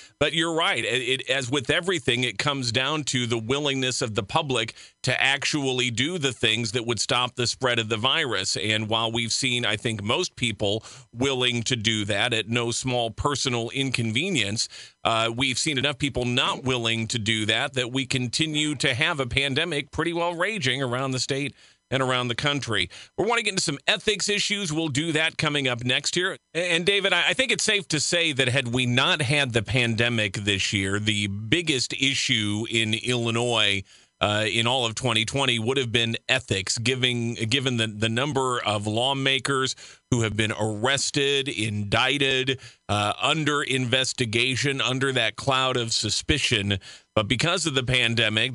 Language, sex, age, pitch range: English, male, 40-59, 115-145 Hz